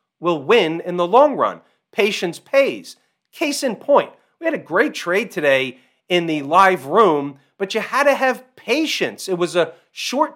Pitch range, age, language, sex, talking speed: 160-215 Hz, 40-59, English, male, 180 wpm